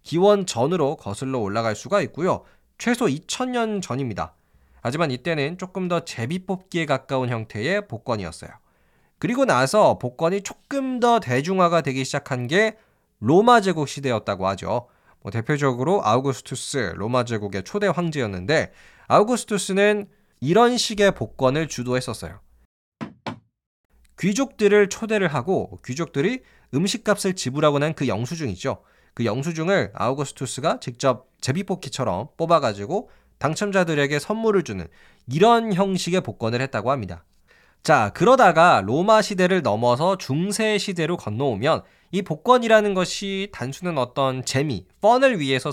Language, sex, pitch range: Korean, male, 125-195 Hz